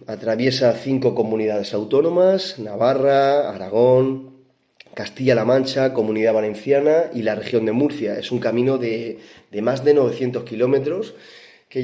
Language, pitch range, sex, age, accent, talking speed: Spanish, 110-130 Hz, male, 30-49, Spanish, 125 wpm